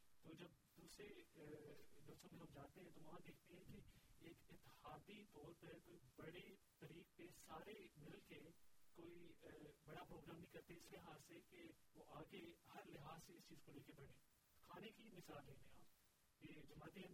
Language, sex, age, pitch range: Urdu, male, 40-59, 145-170 Hz